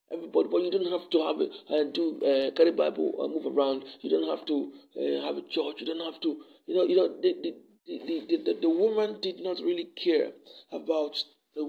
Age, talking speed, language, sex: 50-69, 215 wpm, English, male